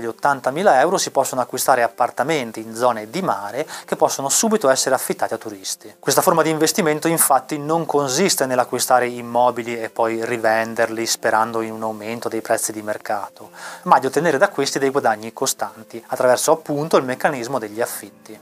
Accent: native